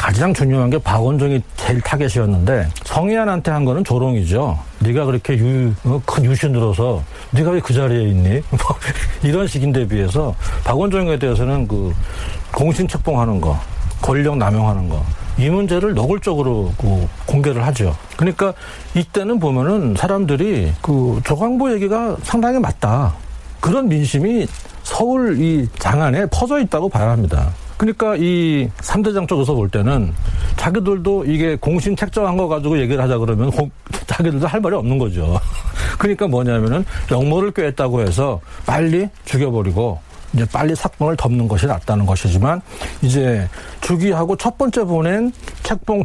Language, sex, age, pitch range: Korean, male, 40-59, 105-170 Hz